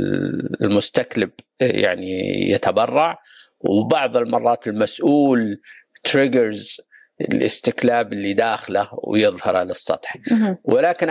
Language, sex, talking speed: Arabic, male, 70 wpm